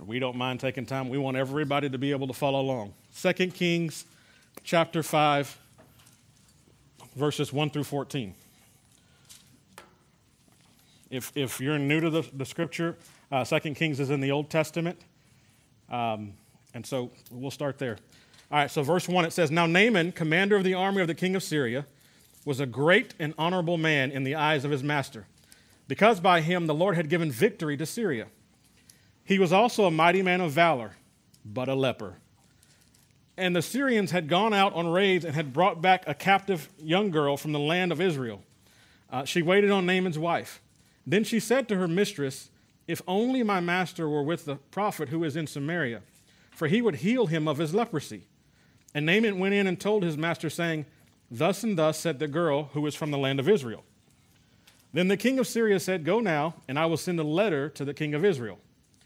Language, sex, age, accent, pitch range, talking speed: English, male, 40-59, American, 135-180 Hz, 190 wpm